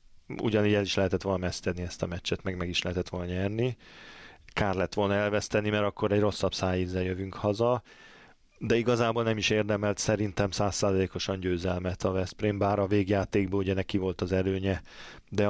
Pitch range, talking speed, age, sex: 95-105 Hz, 175 wpm, 20-39, male